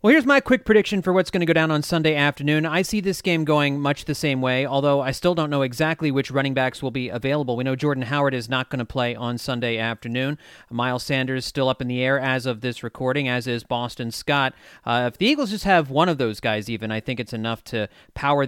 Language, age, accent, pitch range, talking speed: English, 30-49, American, 120-160 Hz, 255 wpm